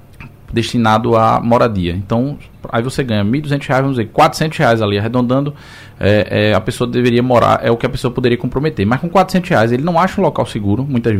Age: 20-39